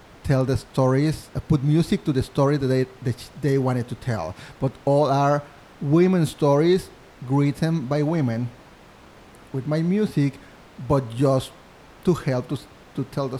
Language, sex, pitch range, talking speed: English, male, 115-140 Hz, 155 wpm